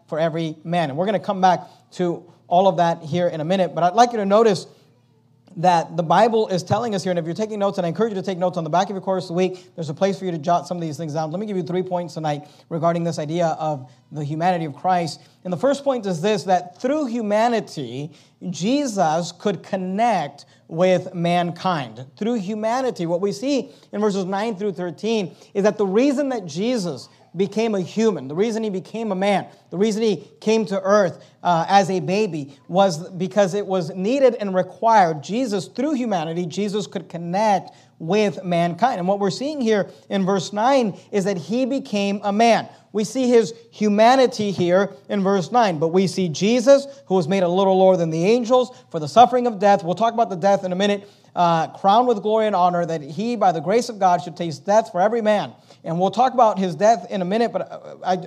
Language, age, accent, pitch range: English, 40-59, American, 175-215 Hz